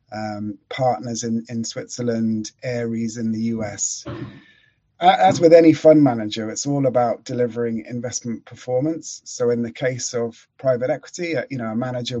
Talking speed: 150 wpm